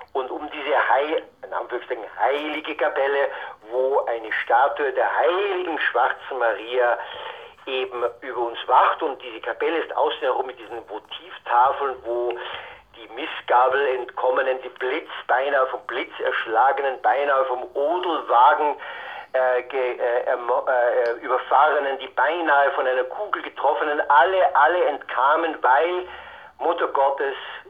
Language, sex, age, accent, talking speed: German, male, 50-69, German, 120 wpm